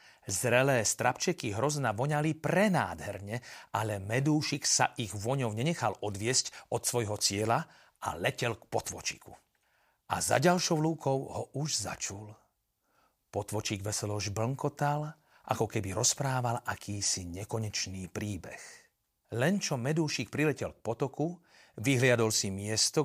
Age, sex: 40-59, male